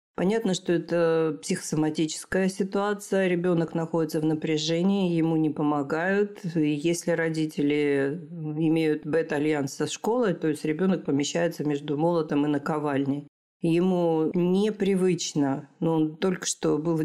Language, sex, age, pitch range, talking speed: Russian, female, 40-59, 150-175 Hz, 120 wpm